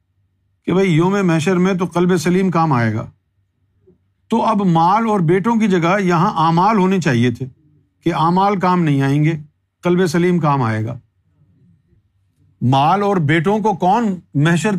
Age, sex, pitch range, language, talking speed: 50-69, male, 115-185 Hz, Urdu, 160 wpm